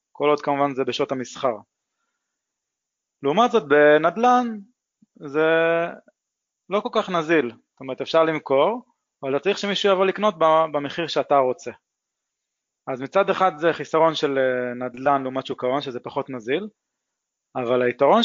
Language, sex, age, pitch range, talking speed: Hebrew, male, 20-39, 130-170 Hz, 130 wpm